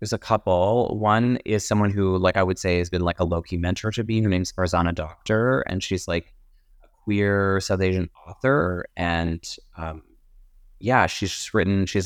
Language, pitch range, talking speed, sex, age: English, 90-105 Hz, 190 wpm, male, 30-49